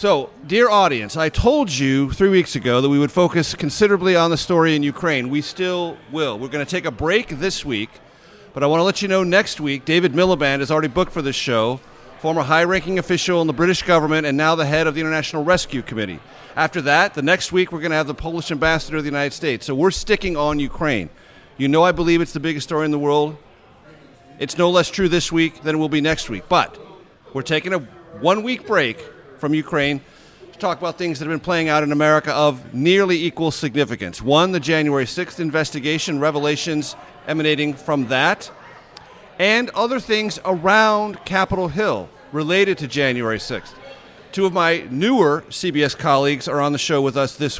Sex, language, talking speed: male, English, 205 wpm